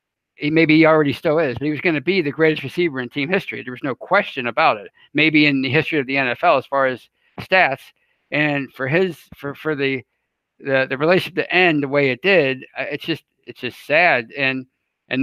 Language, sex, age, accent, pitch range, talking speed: English, male, 50-69, American, 135-160 Hz, 225 wpm